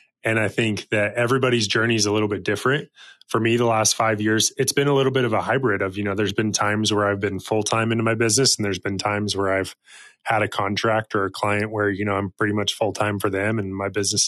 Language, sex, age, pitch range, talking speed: English, male, 20-39, 100-115 Hz, 260 wpm